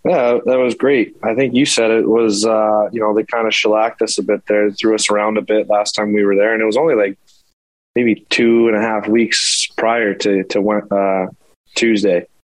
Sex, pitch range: male, 100-115 Hz